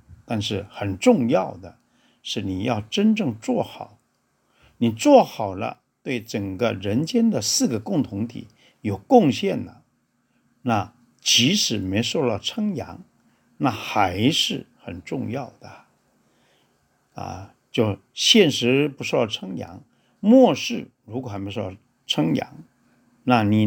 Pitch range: 105-160 Hz